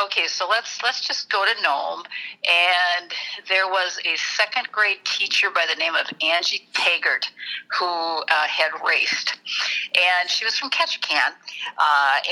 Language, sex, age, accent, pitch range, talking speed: English, female, 50-69, American, 185-225 Hz, 150 wpm